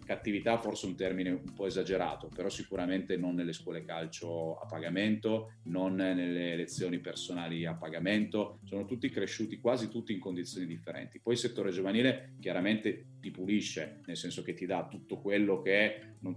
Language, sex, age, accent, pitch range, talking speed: Italian, male, 30-49, native, 85-105 Hz, 170 wpm